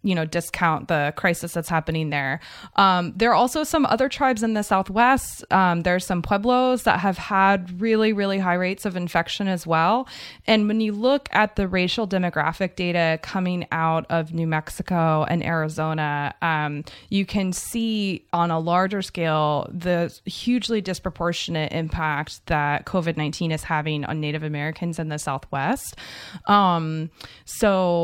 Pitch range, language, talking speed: 160-200 Hz, English, 160 wpm